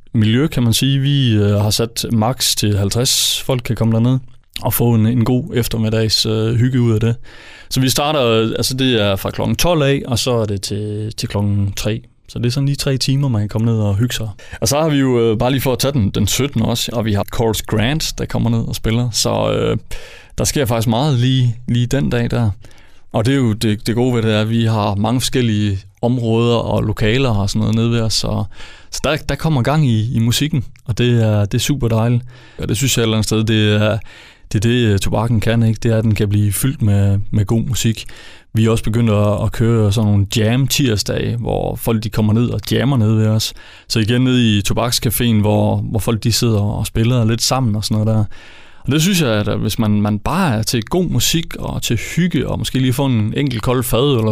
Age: 20-39